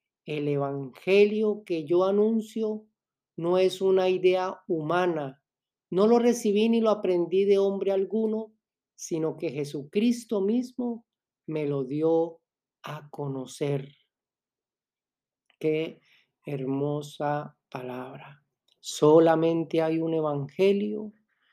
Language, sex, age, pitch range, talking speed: Spanish, male, 50-69, 150-195 Hz, 100 wpm